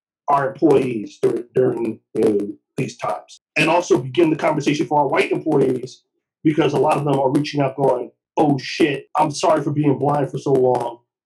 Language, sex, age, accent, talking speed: English, male, 40-59, American, 180 wpm